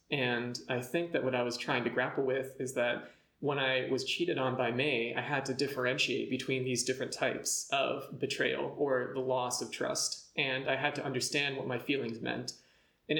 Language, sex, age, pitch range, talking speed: English, male, 20-39, 125-140 Hz, 205 wpm